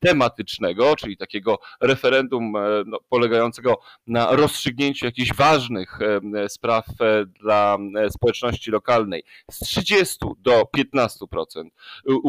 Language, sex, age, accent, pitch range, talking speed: Polish, male, 40-59, native, 110-135 Hz, 90 wpm